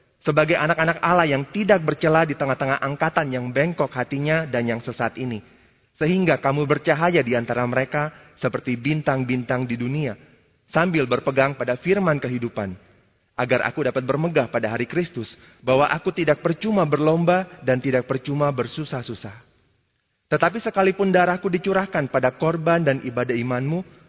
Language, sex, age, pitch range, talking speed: Indonesian, male, 30-49, 125-160 Hz, 140 wpm